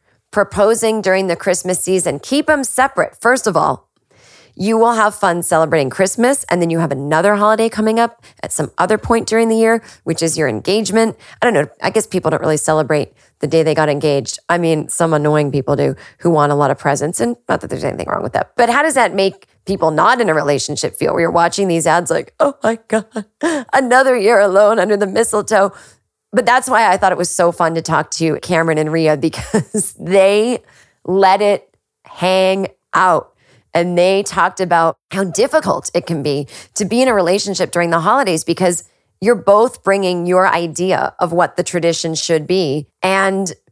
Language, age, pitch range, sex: English, 30-49, 165-220 Hz, female